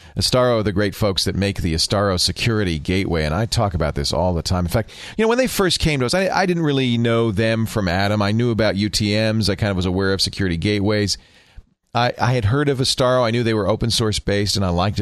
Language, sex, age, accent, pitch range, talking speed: English, male, 40-59, American, 95-125 Hz, 260 wpm